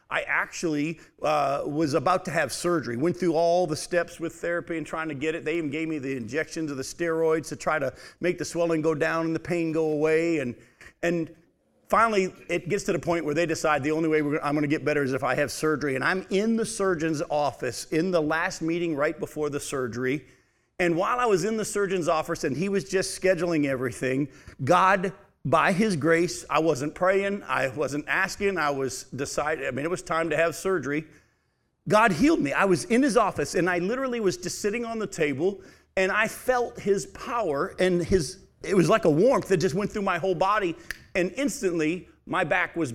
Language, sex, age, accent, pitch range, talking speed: English, male, 50-69, American, 150-185 Hz, 220 wpm